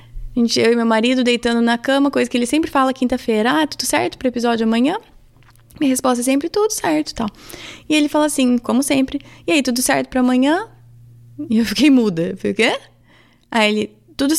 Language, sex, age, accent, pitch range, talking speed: Portuguese, female, 20-39, Brazilian, 200-275 Hz, 215 wpm